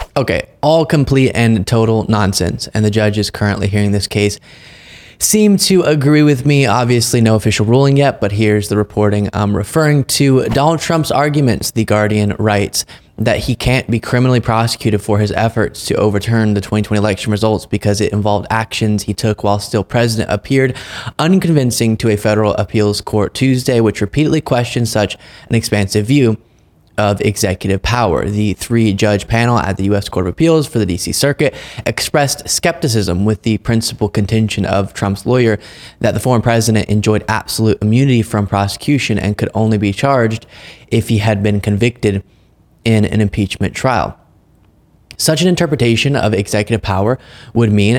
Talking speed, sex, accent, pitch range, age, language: 165 wpm, male, American, 105-125 Hz, 20-39, English